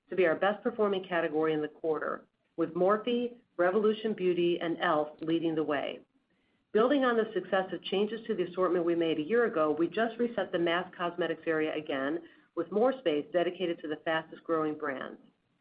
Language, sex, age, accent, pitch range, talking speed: English, female, 50-69, American, 160-210 Hz, 180 wpm